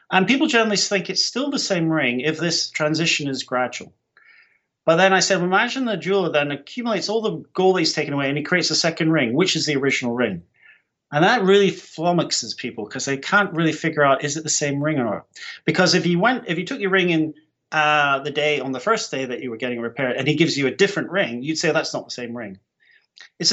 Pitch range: 130-175 Hz